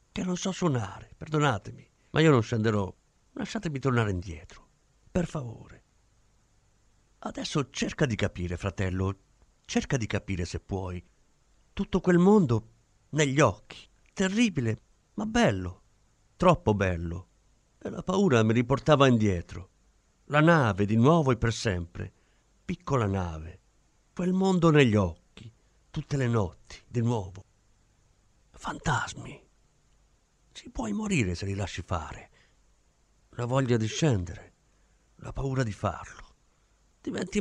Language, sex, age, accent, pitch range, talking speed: Italian, male, 50-69, native, 100-140 Hz, 120 wpm